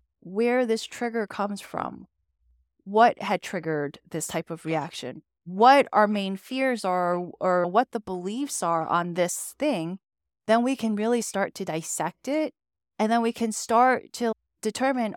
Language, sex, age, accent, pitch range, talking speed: English, female, 20-39, American, 175-220 Hz, 160 wpm